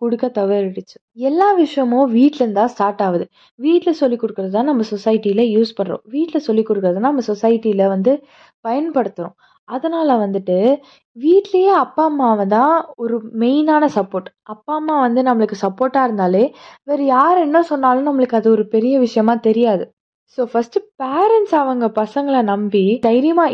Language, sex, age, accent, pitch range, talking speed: Tamil, female, 20-39, native, 215-280 Hz, 140 wpm